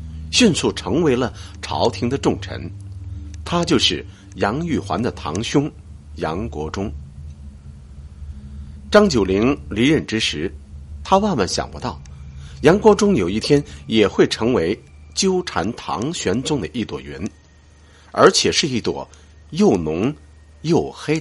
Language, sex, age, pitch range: Chinese, male, 50-69, 75-120 Hz